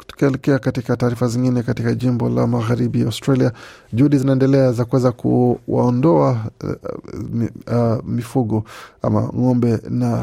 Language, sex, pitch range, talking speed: Swahili, male, 115-130 Hz, 110 wpm